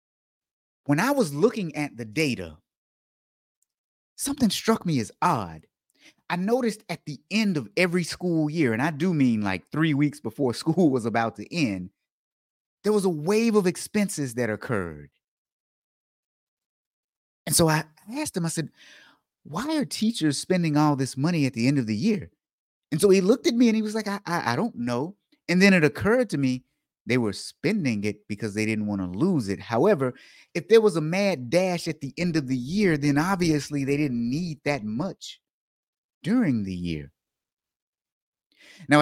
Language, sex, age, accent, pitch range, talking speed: English, male, 30-49, American, 115-180 Hz, 180 wpm